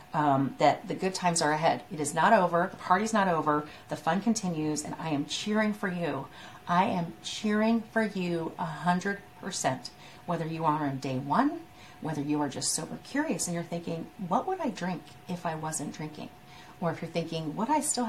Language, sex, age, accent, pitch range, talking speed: English, female, 40-59, American, 155-210 Hz, 200 wpm